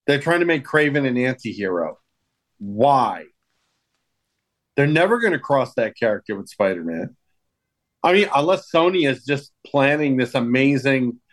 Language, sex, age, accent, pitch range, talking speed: English, male, 40-59, American, 120-155 Hz, 150 wpm